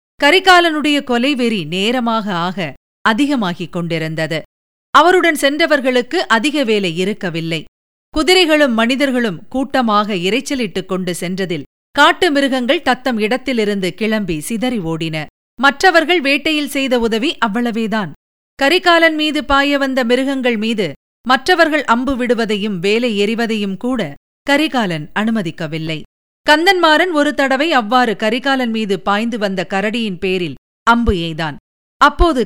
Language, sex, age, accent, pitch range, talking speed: Tamil, female, 50-69, native, 195-275 Hz, 100 wpm